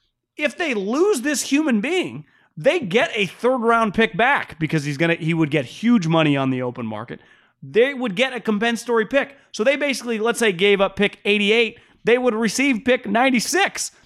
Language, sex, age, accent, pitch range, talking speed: English, male, 30-49, American, 145-225 Hz, 195 wpm